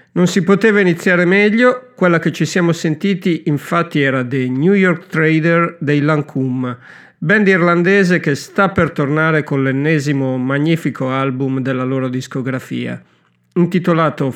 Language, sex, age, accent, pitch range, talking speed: Italian, male, 50-69, native, 135-180 Hz, 135 wpm